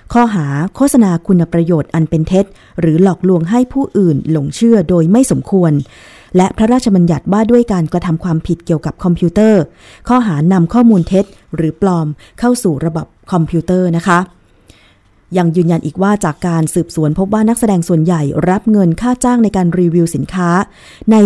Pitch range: 155-195 Hz